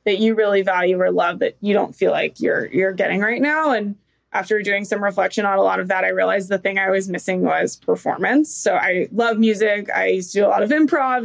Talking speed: 250 wpm